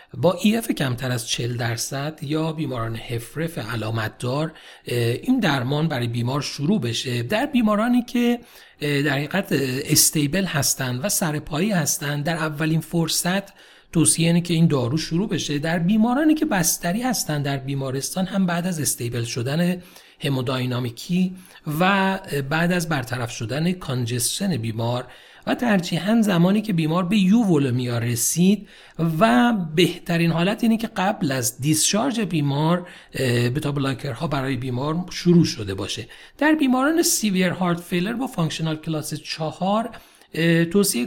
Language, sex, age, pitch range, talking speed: Persian, male, 40-59, 135-195 Hz, 130 wpm